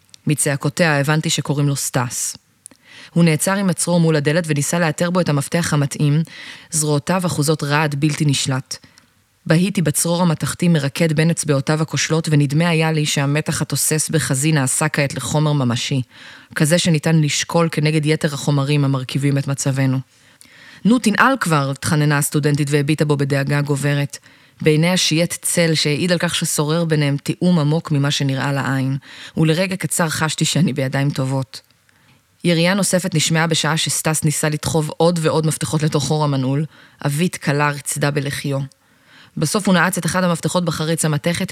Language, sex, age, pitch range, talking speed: Hebrew, female, 20-39, 140-165 Hz, 145 wpm